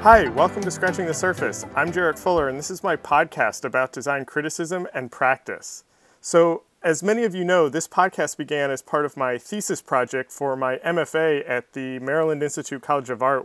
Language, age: English, 30-49